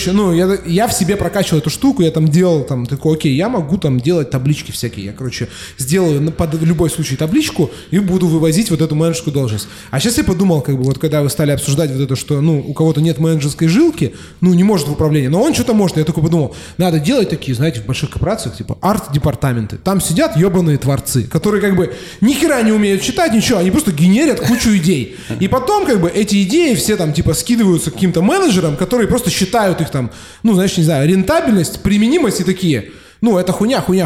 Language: Russian